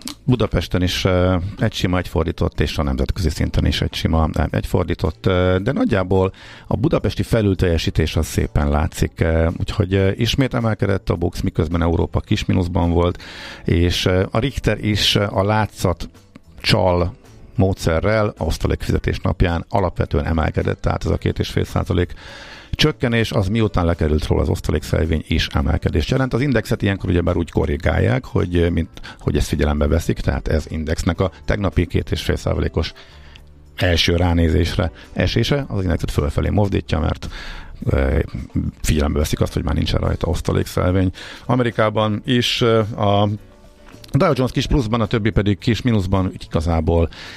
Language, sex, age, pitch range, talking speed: Hungarian, male, 50-69, 85-105 Hz, 135 wpm